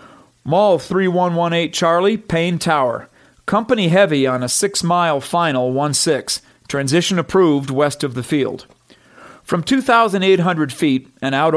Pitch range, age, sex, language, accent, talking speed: 140-190 Hz, 40-59, male, English, American, 130 wpm